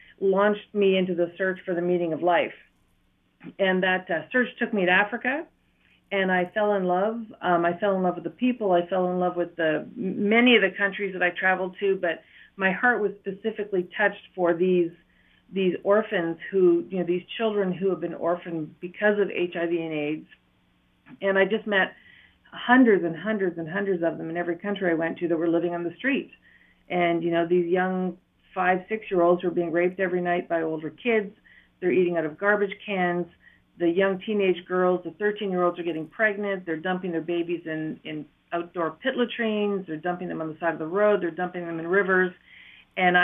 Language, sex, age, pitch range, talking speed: English, female, 50-69, 170-200 Hz, 205 wpm